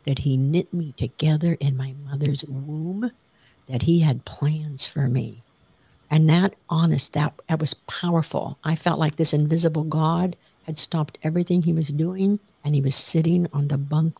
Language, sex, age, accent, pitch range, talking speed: English, female, 60-79, American, 140-165 Hz, 175 wpm